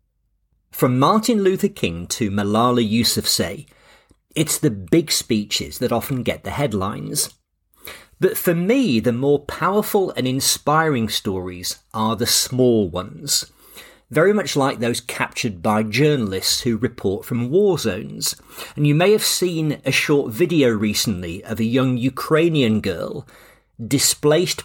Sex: male